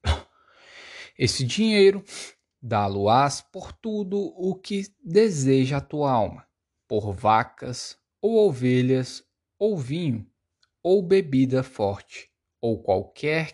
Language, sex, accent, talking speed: Portuguese, male, Brazilian, 95 wpm